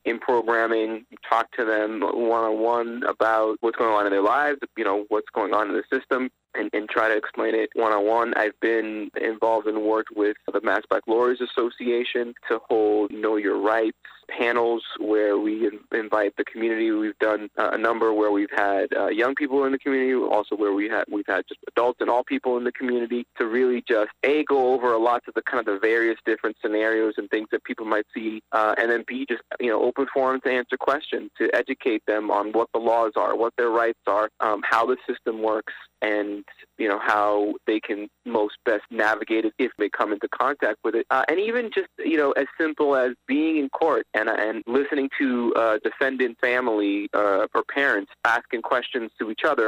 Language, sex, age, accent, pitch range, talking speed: English, male, 20-39, American, 110-125 Hz, 215 wpm